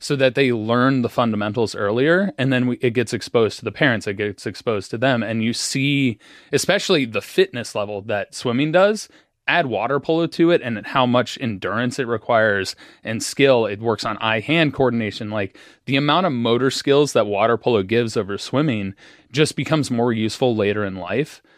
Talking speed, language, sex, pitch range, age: 185 wpm, English, male, 110-135 Hz, 20-39